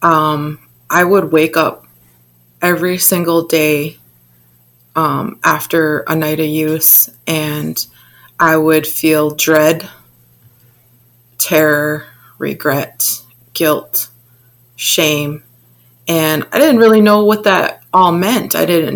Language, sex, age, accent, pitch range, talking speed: English, female, 20-39, American, 120-165 Hz, 110 wpm